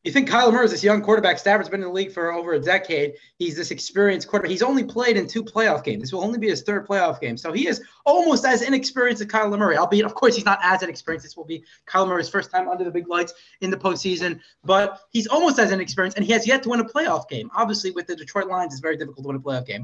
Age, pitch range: 20-39, 170-235 Hz